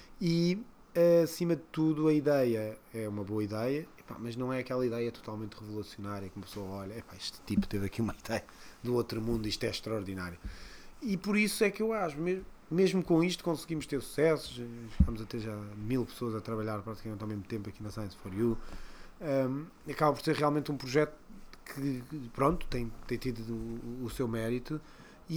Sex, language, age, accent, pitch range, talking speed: male, Portuguese, 20-39, Portuguese, 115-155 Hz, 175 wpm